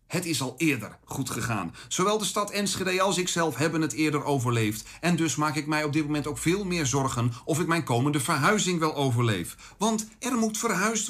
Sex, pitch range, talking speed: male, 145-195 Hz, 210 wpm